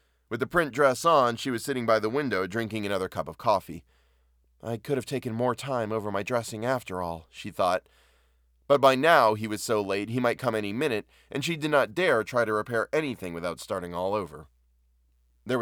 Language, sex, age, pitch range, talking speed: English, male, 20-39, 80-125 Hz, 210 wpm